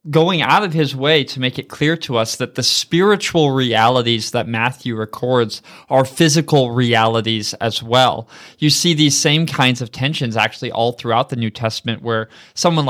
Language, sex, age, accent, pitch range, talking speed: English, male, 20-39, American, 130-170 Hz, 175 wpm